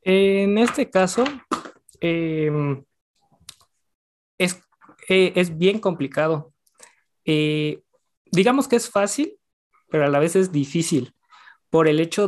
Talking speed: 110 wpm